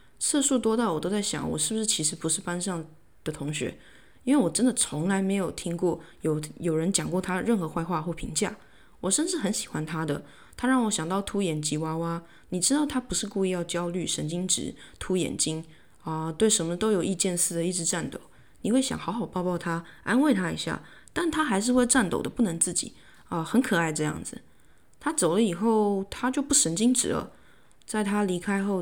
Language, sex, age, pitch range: Chinese, female, 20-39, 160-205 Hz